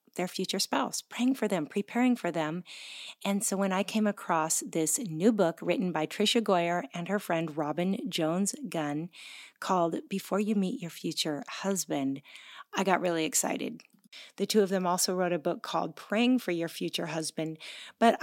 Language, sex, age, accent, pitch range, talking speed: English, female, 40-59, American, 175-220 Hz, 180 wpm